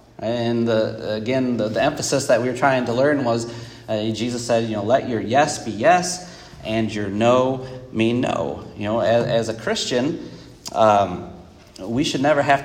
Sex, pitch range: male, 115-145 Hz